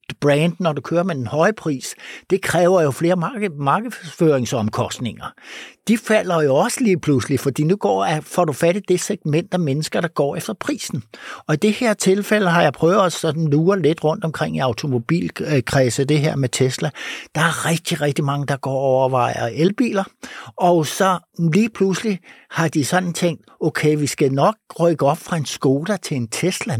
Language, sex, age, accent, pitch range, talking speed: Danish, male, 60-79, native, 115-175 Hz, 185 wpm